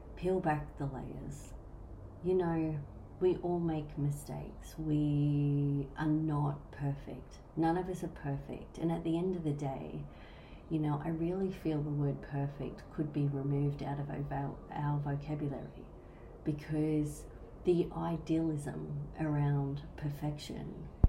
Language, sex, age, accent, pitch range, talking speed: English, female, 30-49, Australian, 130-155 Hz, 130 wpm